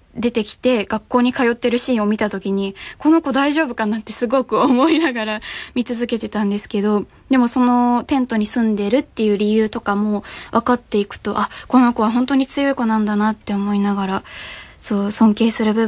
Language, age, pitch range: Japanese, 20-39, 215-260 Hz